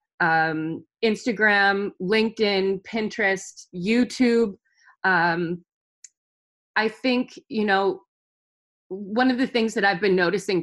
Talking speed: 100 wpm